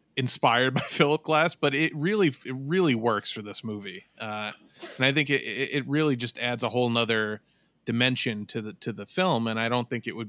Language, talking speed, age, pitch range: English, 215 wpm, 30-49, 110-135 Hz